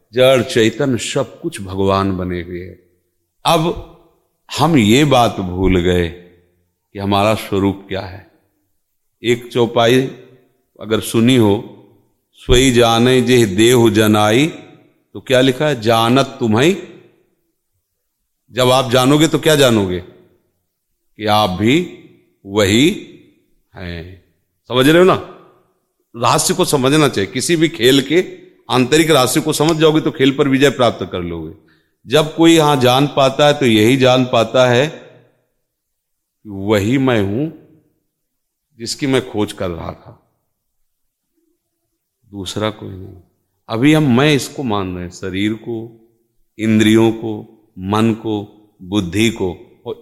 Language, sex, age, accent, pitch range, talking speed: Hindi, male, 40-59, native, 100-135 Hz, 130 wpm